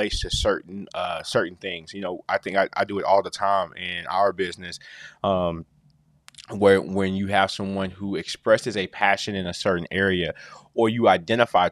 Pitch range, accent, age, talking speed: 95-110 Hz, American, 20-39, 185 wpm